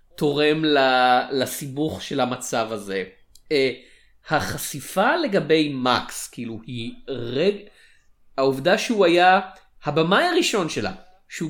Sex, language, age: male, Hebrew, 30-49